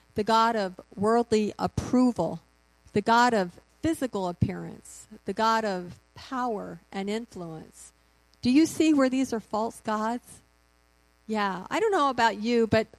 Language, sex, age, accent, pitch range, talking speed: English, female, 50-69, American, 185-275 Hz, 145 wpm